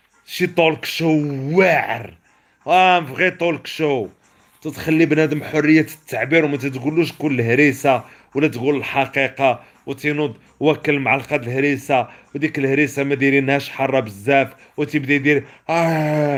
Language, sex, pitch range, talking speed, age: Arabic, male, 120-155 Hz, 125 wpm, 40-59